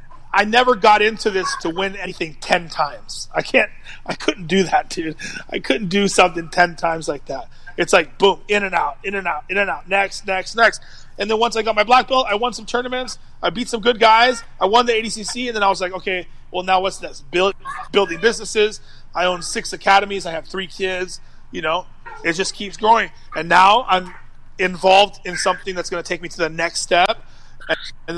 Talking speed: 220 wpm